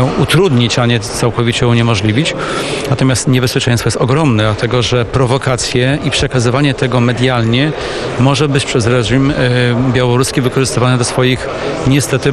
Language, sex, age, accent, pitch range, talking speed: Polish, male, 40-59, native, 125-145 Hz, 120 wpm